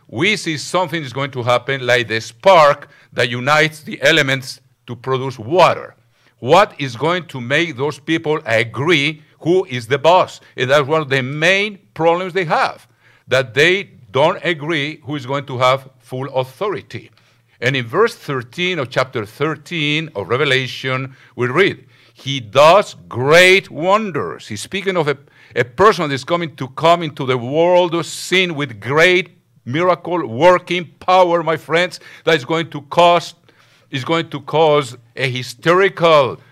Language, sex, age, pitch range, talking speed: English, male, 50-69, 130-165 Hz, 155 wpm